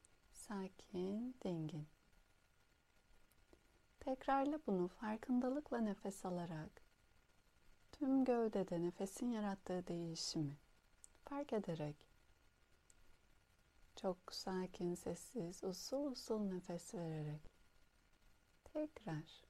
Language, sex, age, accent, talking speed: Turkish, female, 60-79, native, 70 wpm